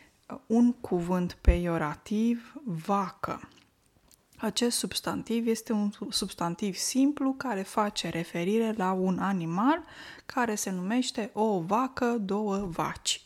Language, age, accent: Romanian, 20-39, native